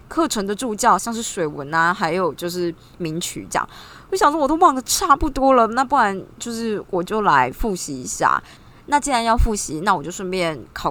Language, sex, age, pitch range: Chinese, female, 20-39, 170-235 Hz